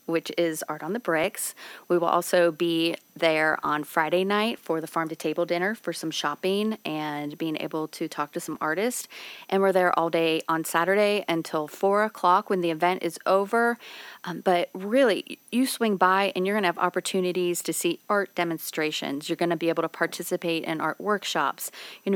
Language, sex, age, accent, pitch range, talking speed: English, female, 30-49, American, 160-195 Hz, 190 wpm